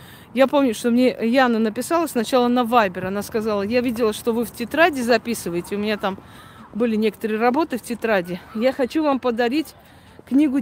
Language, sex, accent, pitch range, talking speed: Russian, female, native, 210-260 Hz, 175 wpm